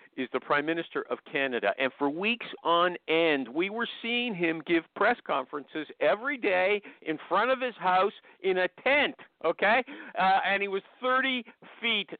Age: 50-69